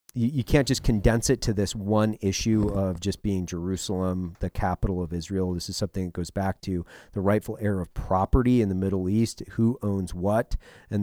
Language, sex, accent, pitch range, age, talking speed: English, male, American, 90-110 Hz, 30-49, 200 wpm